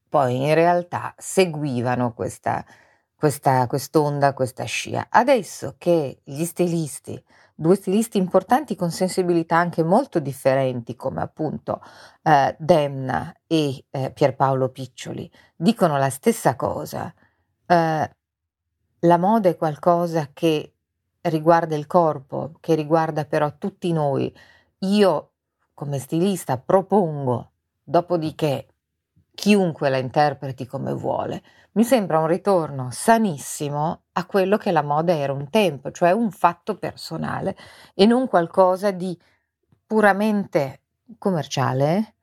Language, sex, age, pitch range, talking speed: Italian, female, 40-59, 135-180 Hz, 115 wpm